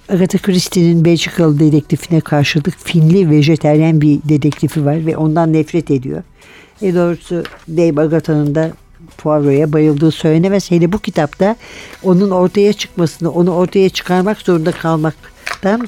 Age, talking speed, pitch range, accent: 60-79, 125 wpm, 155-185 Hz, native